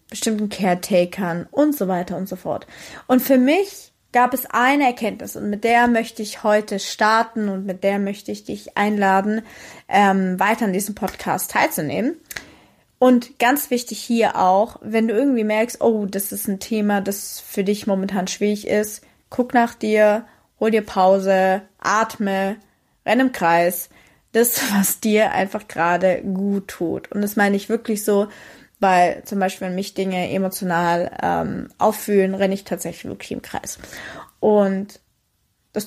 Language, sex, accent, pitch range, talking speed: English, female, German, 195-235 Hz, 160 wpm